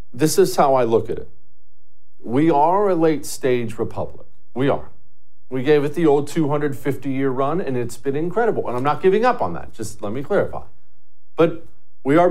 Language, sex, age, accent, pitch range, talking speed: English, male, 40-59, American, 110-155 Hz, 190 wpm